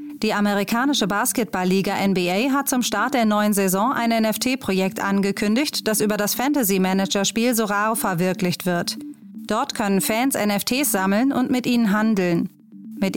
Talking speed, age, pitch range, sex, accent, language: 135 wpm, 30-49, 195-240 Hz, female, German, German